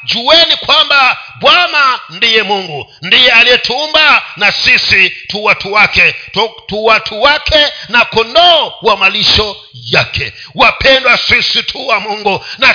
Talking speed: 125 wpm